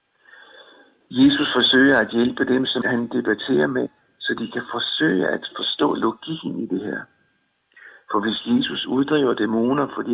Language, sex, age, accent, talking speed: Danish, male, 60-79, native, 150 wpm